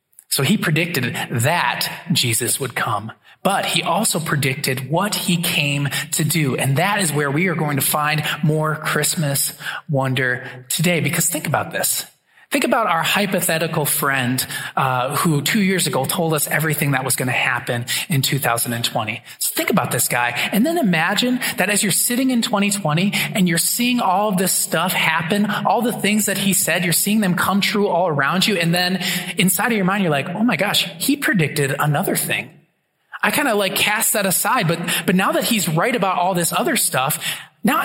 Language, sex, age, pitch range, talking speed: English, male, 20-39, 155-215 Hz, 195 wpm